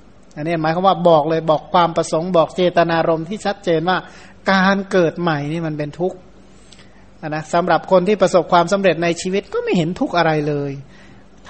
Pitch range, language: 170-200 Hz, Thai